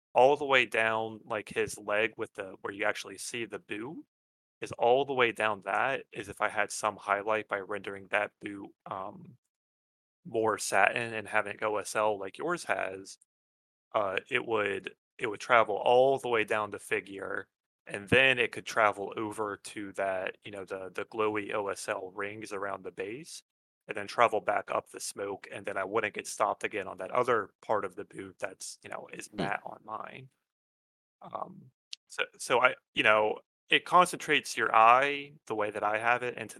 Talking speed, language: 190 wpm, English